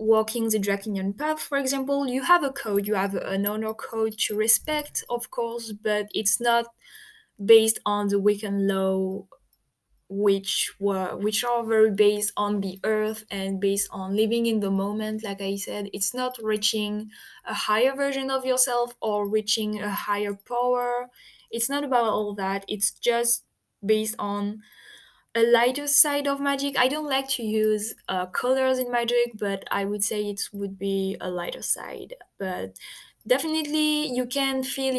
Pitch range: 200-240 Hz